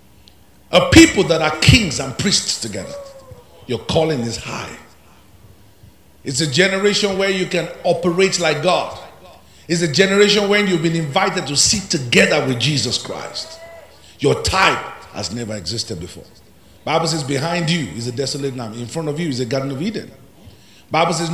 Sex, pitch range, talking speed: male, 135-185 Hz, 165 wpm